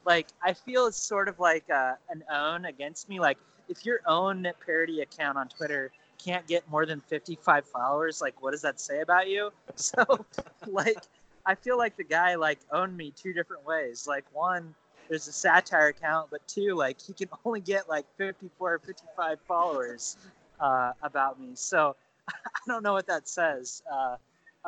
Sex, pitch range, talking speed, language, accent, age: male, 135-175 Hz, 180 wpm, English, American, 20-39